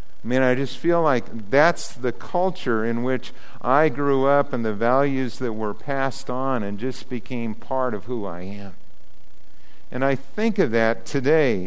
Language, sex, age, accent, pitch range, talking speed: English, male, 50-69, American, 110-145 Hz, 180 wpm